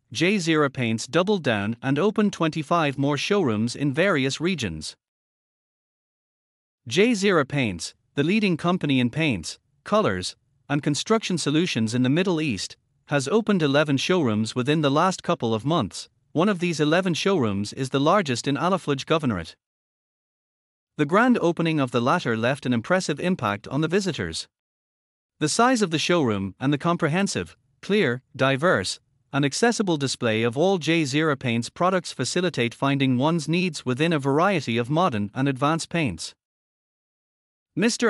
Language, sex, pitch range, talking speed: English, male, 125-175 Hz, 145 wpm